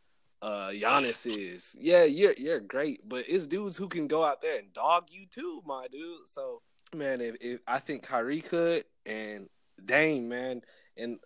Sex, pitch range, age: male, 115-165 Hz, 20-39